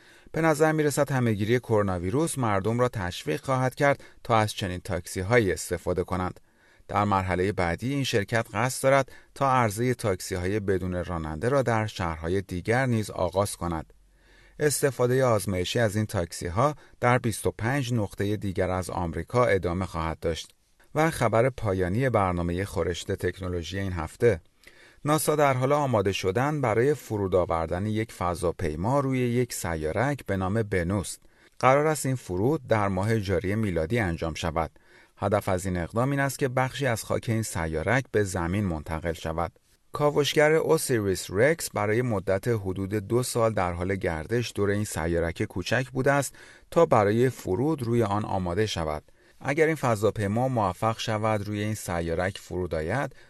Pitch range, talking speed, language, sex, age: 90-125 Hz, 150 wpm, Persian, male, 30-49